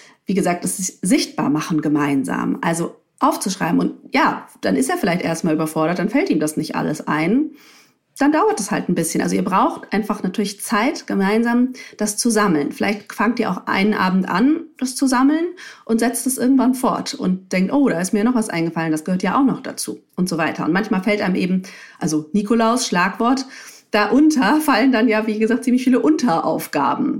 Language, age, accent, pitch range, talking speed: German, 40-59, German, 185-250 Hz, 200 wpm